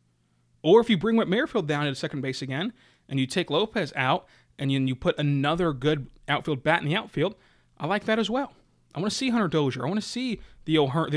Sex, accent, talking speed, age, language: male, American, 230 wpm, 30-49, English